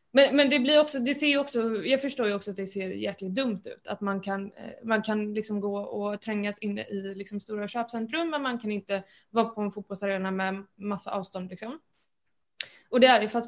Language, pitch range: Swedish, 200-230 Hz